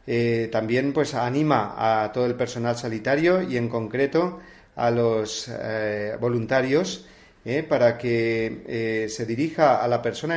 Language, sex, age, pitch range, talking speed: Spanish, male, 40-59, 115-140 Hz, 145 wpm